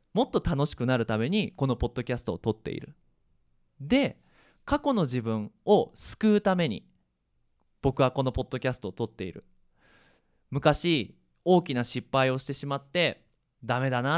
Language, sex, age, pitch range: Japanese, male, 20-39, 120-180 Hz